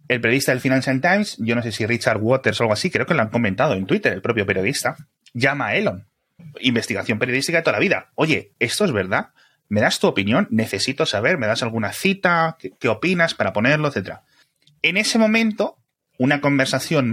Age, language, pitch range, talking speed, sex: 30-49, Spanish, 110-155 Hz, 200 wpm, male